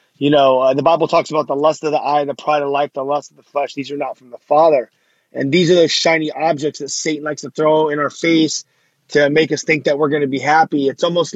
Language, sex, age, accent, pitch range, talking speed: English, male, 30-49, American, 140-160 Hz, 280 wpm